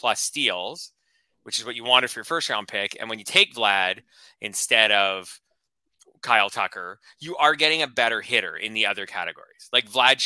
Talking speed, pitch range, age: 195 wpm, 105-140 Hz, 20-39